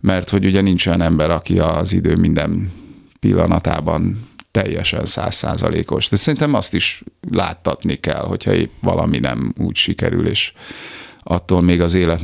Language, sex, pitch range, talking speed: Hungarian, male, 80-95 Hz, 140 wpm